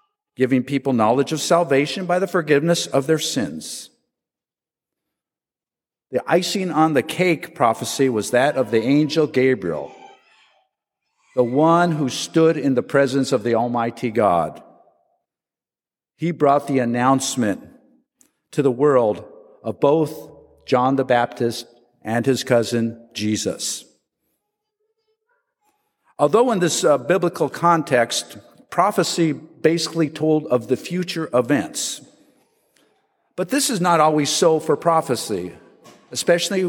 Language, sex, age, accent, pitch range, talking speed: English, male, 50-69, American, 130-175 Hz, 120 wpm